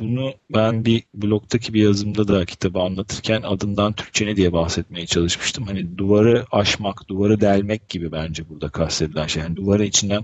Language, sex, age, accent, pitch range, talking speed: Turkish, male, 40-59, native, 90-105 Hz, 165 wpm